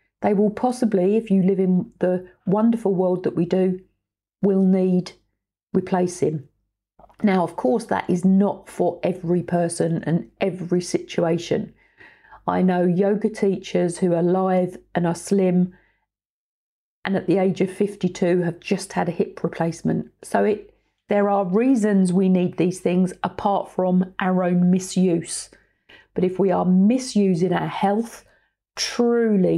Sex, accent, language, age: female, British, English, 40-59